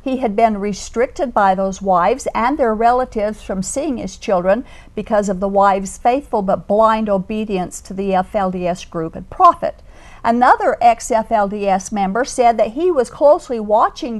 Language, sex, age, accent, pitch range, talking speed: English, female, 50-69, American, 195-250 Hz, 155 wpm